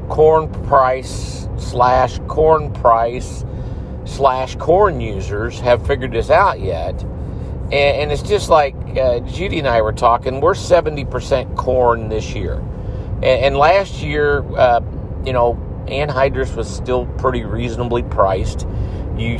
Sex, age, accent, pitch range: male, 50-69, American, 105-130 Hz